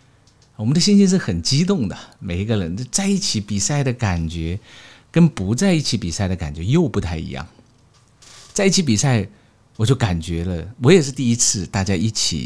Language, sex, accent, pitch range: Chinese, male, native, 95-130 Hz